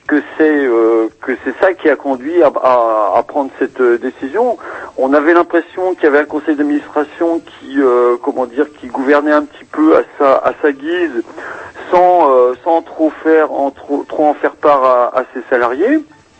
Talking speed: 185 wpm